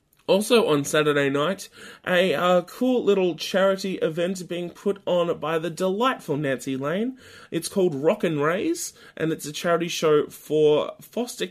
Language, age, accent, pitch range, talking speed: English, 20-39, Australian, 145-195 Hz, 155 wpm